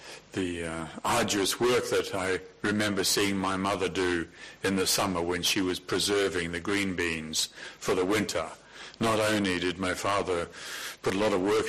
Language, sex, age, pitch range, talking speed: English, male, 50-69, 85-100 Hz, 175 wpm